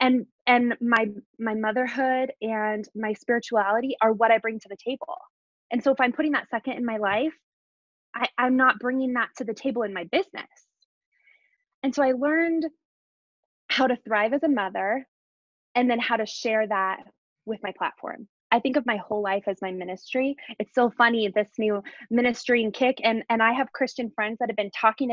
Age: 20-39